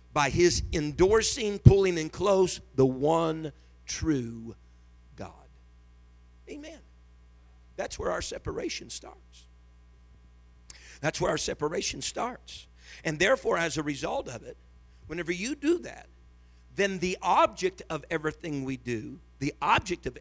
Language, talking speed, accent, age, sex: English, 125 wpm, American, 50-69, male